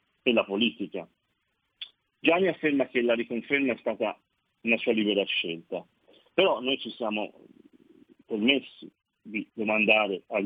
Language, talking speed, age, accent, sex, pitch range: Italian, 120 wpm, 40-59, native, male, 100-135 Hz